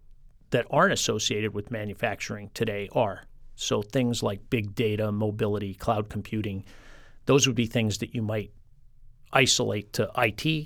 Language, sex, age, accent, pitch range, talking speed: English, male, 50-69, American, 105-125 Hz, 140 wpm